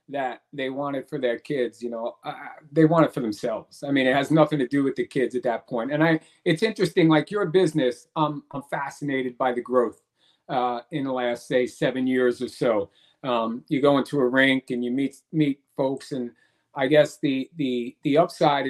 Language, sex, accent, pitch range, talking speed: English, male, American, 130-160 Hz, 215 wpm